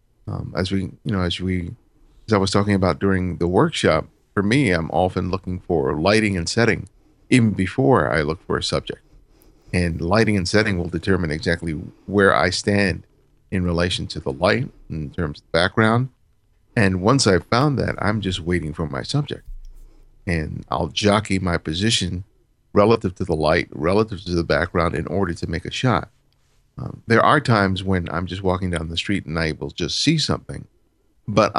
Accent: American